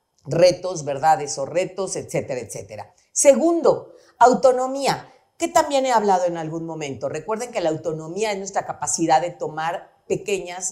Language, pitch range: Spanish, 180-260 Hz